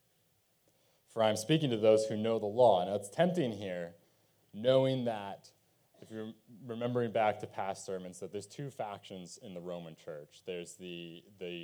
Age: 20-39